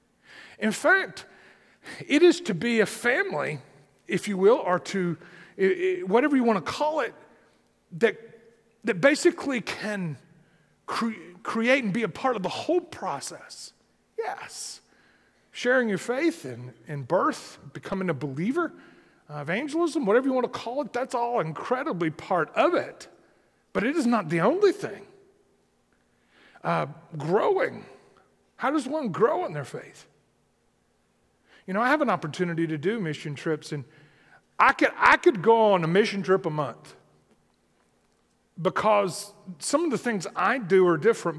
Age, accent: 40-59, American